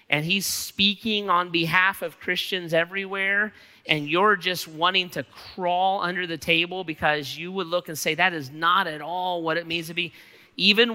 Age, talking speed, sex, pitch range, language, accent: 40-59, 185 wpm, male, 150-185 Hz, English, American